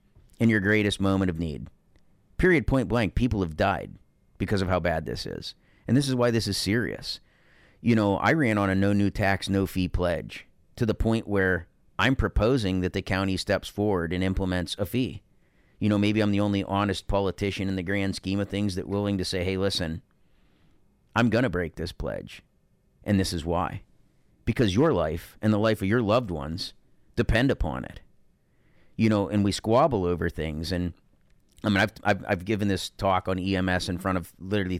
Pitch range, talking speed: 90-105 Hz, 200 wpm